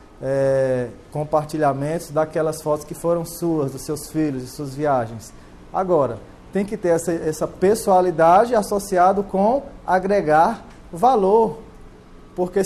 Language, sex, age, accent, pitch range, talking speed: Portuguese, male, 20-39, Brazilian, 145-190 Hz, 120 wpm